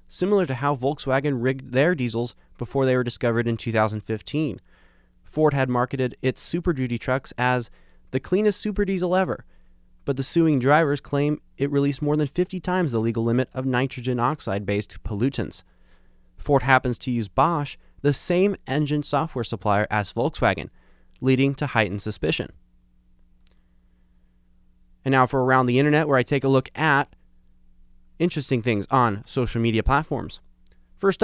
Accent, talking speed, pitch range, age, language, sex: American, 150 wpm, 105-145 Hz, 20-39, English, male